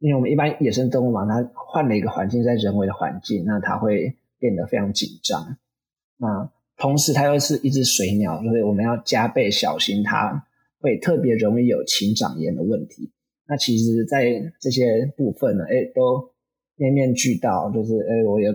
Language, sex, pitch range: Chinese, male, 110-135 Hz